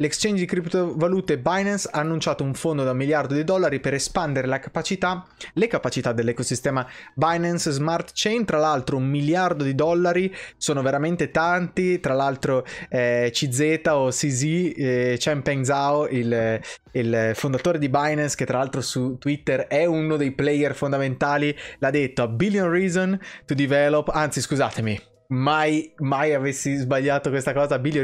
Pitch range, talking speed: 130-165 Hz, 155 wpm